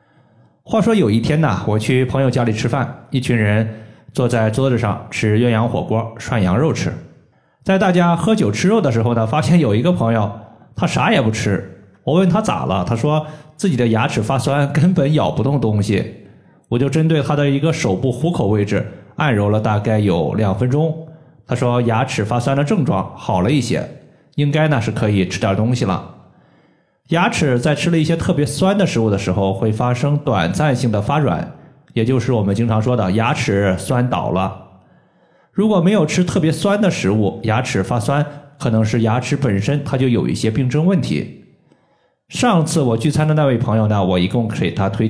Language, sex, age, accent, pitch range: Chinese, male, 20-39, native, 110-155 Hz